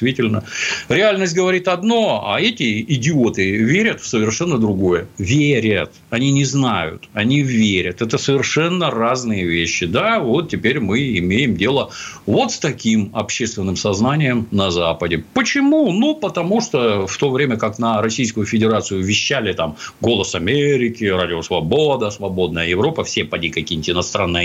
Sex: male